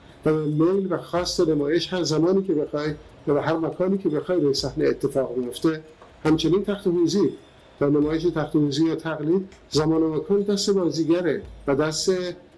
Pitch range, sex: 140-175 Hz, male